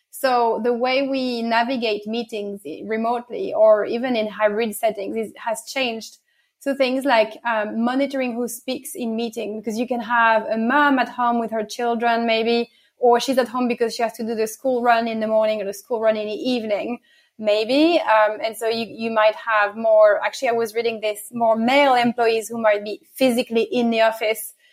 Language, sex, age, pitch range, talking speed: English, female, 30-49, 220-245 Hz, 200 wpm